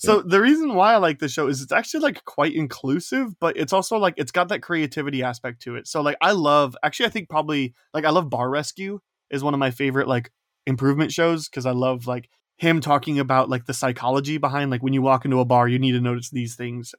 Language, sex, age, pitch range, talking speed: English, male, 20-39, 125-155 Hz, 245 wpm